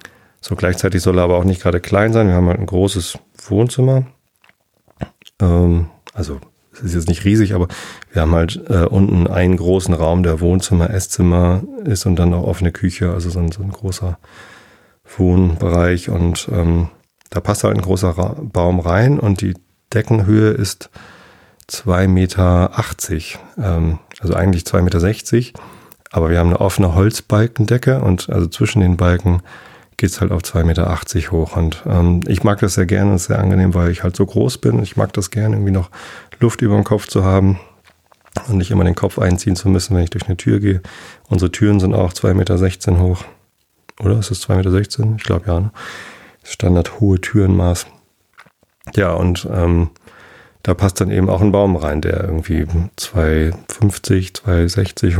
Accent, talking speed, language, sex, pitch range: German, 170 wpm, German, male, 90-100 Hz